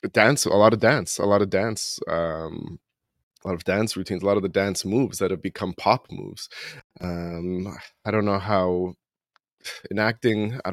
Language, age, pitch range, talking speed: English, 20-39, 95-105 Hz, 190 wpm